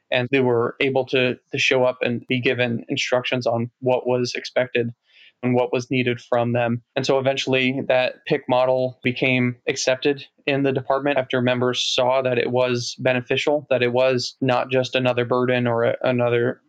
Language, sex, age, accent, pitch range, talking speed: English, male, 20-39, American, 120-130 Hz, 180 wpm